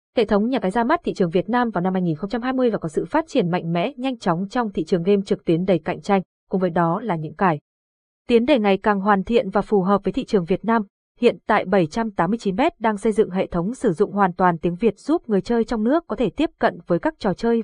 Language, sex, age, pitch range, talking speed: Vietnamese, female, 20-39, 190-240 Hz, 265 wpm